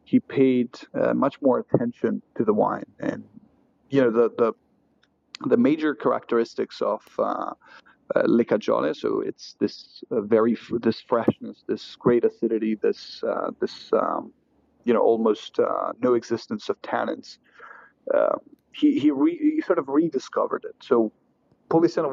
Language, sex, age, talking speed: English, male, 30-49, 150 wpm